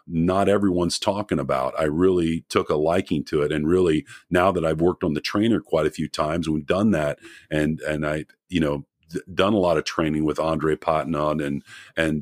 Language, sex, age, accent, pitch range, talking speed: English, male, 40-59, American, 80-100 Hz, 210 wpm